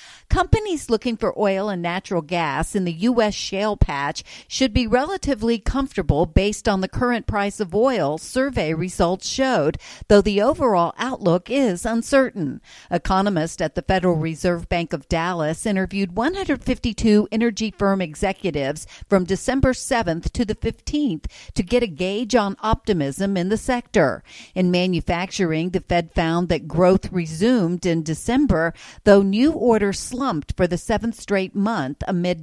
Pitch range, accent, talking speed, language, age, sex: 175-230 Hz, American, 150 wpm, English, 50-69, female